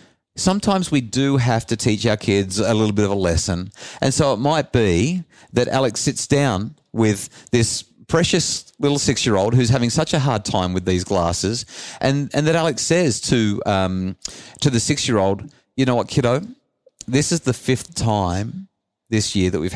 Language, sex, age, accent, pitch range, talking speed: English, male, 40-59, Australian, 100-135 Hz, 180 wpm